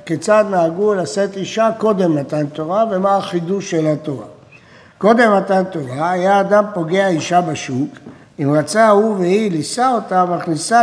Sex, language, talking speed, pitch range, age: male, Hebrew, 145 wpm, 160-220 Hz, 60-79